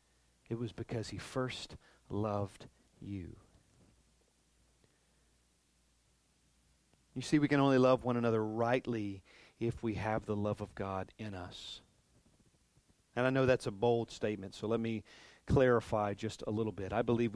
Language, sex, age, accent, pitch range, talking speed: English, male, 40-59, American, 105-130 Hz, 145 wpm